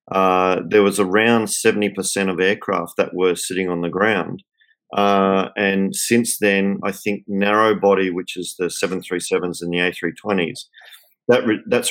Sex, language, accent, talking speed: male, English, Australian, 145 wpm